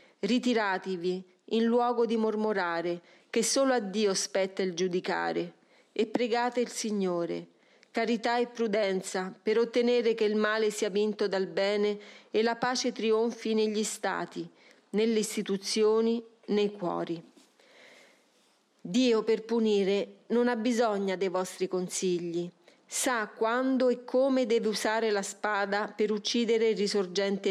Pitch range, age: 195-230 Hz, 40-59